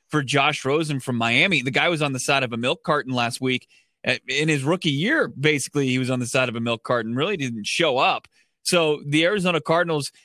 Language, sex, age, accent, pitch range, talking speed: English, male, 20-39, American, 135-160 Hz, 230 wpm